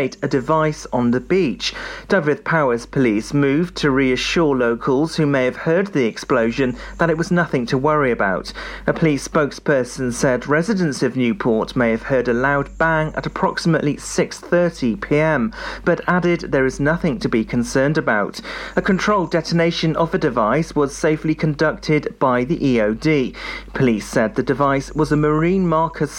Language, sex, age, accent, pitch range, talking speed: English, male, 40-59, British, 130-165 Hz, 160 wpm